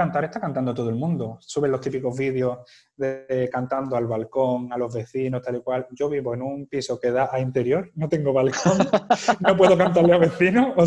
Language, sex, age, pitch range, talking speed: Spanish, male, 20-39, 125-145 Hz, 215 wpm